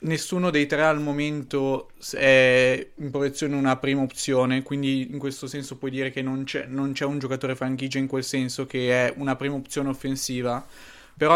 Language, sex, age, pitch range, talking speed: Italian, male, 20-39, 125-140 Hz, 185 wpm